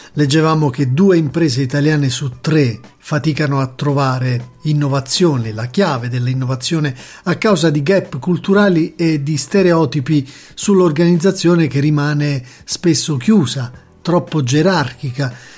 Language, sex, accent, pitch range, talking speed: Italian, male, native, 135-175 Hz, 110 wpm